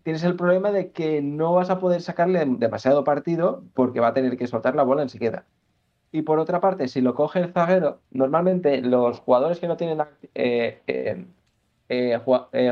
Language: Spanish